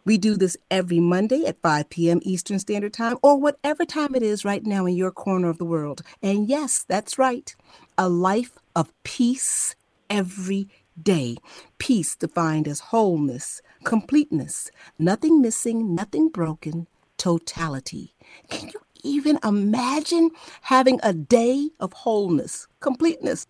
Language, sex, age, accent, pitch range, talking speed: English, female, 40-59, American, 175-255 Hz, 140 wpm